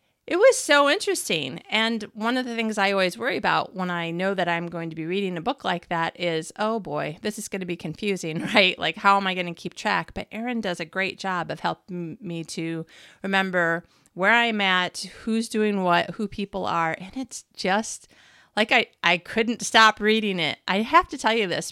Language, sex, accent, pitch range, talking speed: English, female, American, 185-230 Hz, 215 wpm